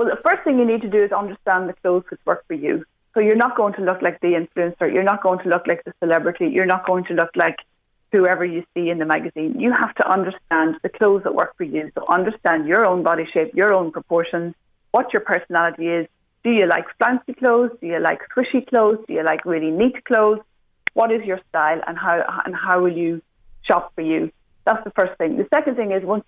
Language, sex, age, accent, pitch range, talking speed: English, female, 30-49, Irish, 180-235 Hz, 240 wpm